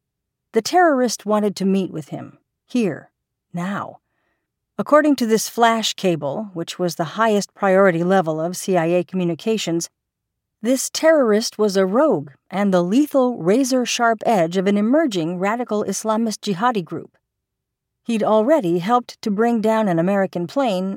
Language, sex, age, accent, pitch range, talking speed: English, female, 50-69, American, 175-225 Hz, 140 wpm